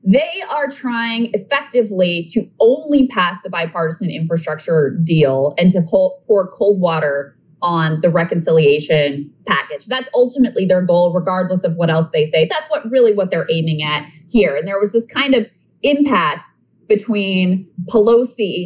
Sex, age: female, 20-39